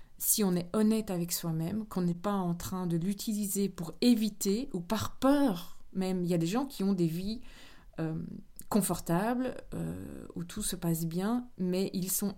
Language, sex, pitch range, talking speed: French, female, 165-205 Hz, 190 wpm